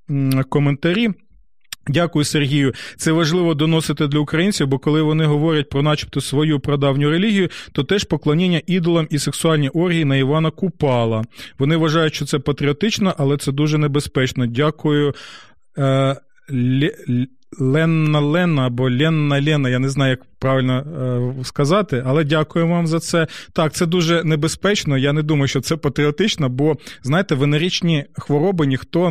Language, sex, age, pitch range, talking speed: Ukrainian, male, 20-39, 135-165 Hz, 135 wpm